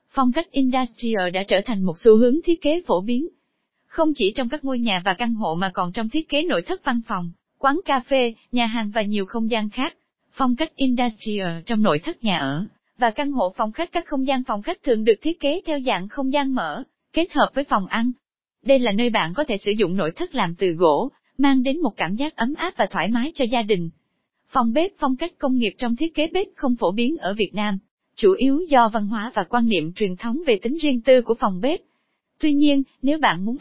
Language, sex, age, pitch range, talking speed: Vietnamese, female, 20-39, 210-280 Hz, 245 wpm